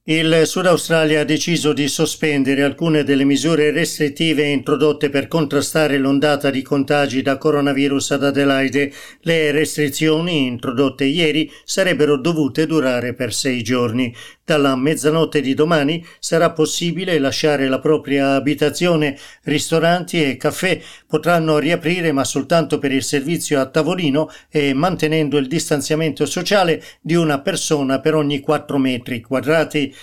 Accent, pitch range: native, 135-160 Hz